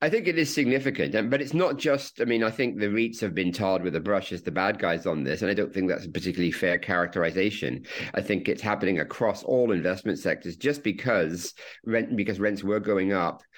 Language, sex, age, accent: English, male, 50-69, British